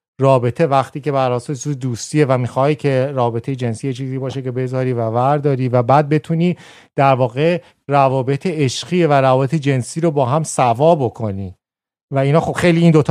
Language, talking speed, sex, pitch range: Persian, 175 wpm, male, 125-160 Hz